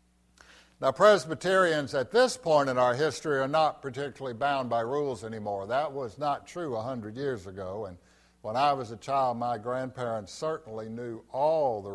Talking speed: 175 wpm